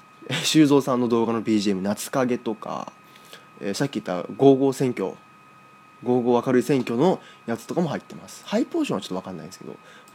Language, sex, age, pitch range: Japanese, male, 20-39, 100-140 Hz